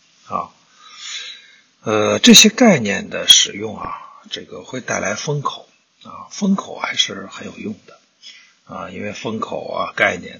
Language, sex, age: Chinese, male, 50-69